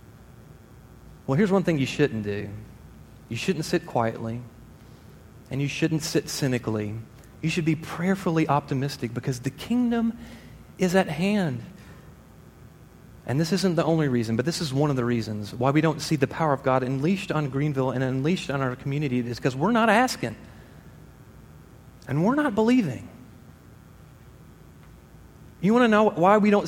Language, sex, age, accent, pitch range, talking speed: English, male, 30-49, American, 120-180 Hz, 160 wpm